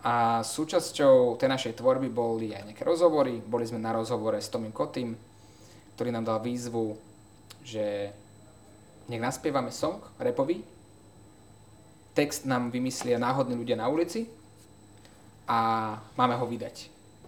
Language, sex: Slovak, male